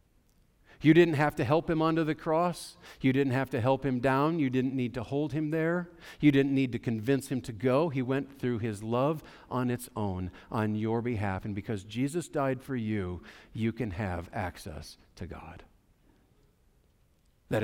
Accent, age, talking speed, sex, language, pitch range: American, 50-69, 185 wpm, male, English, 110-155 Hz